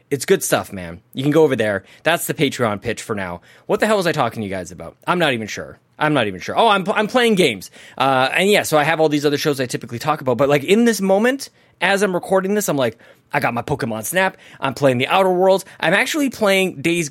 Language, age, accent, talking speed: English, 20-39, American, 270 wpm